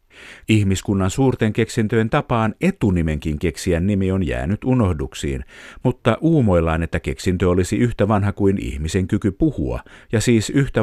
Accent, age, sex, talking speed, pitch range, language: native, 50-69, male, 135 wpm, 85-115 Hz, Finnish